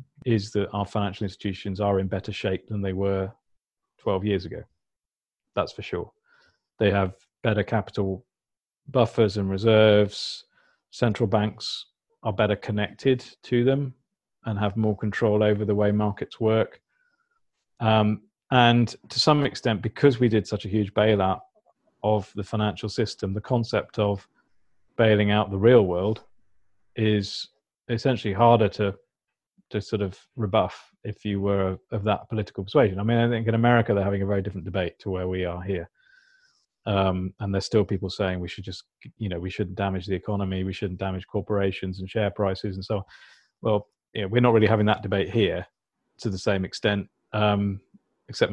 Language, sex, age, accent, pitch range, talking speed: English, male, 40-59, British, 100-115 Hz, 175 wpm